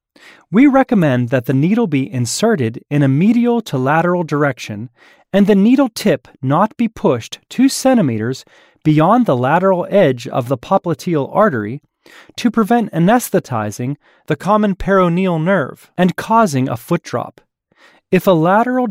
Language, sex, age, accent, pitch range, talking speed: English, male, 30-49, American, 140-215 Hz, 145 wpm